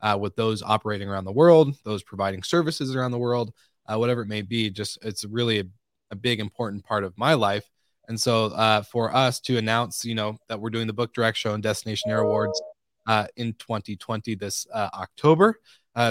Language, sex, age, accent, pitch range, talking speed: English, male, 20-39, American, 105-120 Hz, 205 wpm